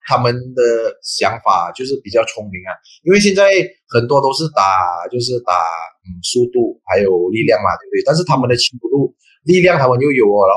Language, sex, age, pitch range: Chinese, male, 20-39, 120-195 Hz